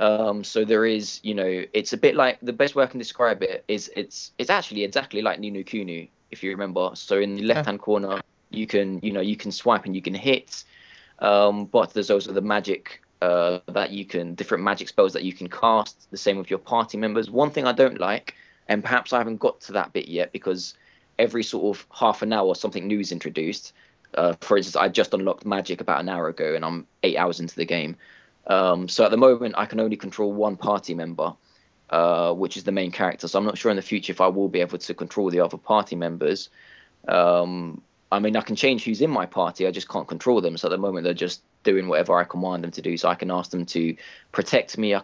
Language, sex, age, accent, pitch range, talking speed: English, male, 20-39, British, 90-110 Hz, 245 wpm